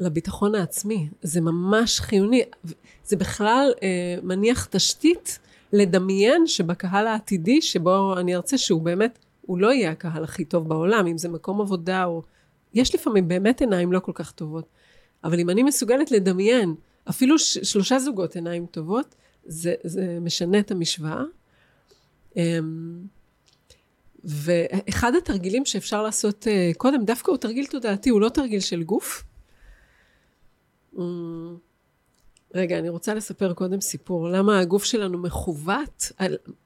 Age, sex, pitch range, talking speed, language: 30-49, female, 170-225 Hz, 135 wpm, Hebrew